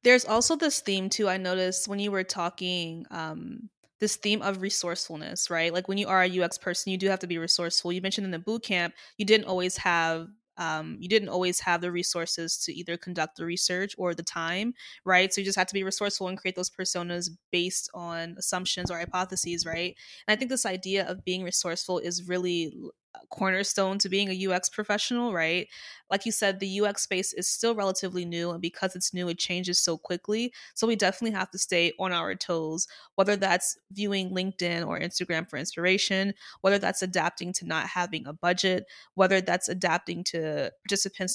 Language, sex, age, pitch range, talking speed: English, female, 20-39, 175-200 Hz, 200 wpm